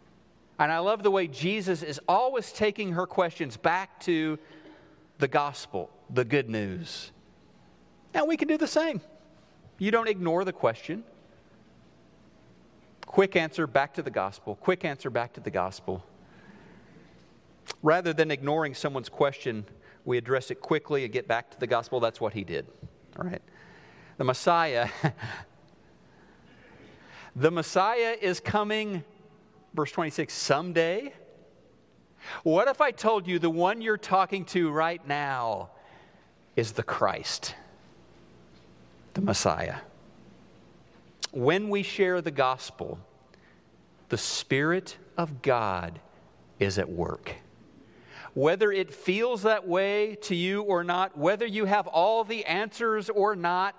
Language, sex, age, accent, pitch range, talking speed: English, male, 40-59, American, 130-195 Hz, 130 wpm